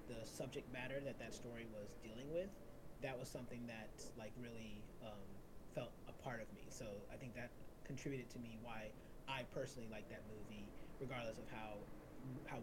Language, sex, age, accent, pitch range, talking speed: English, male, 30-49, American, 120-145 Hz, 180 wpm